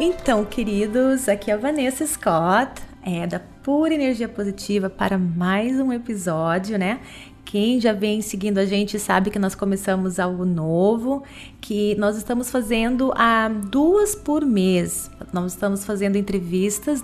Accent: Brazilian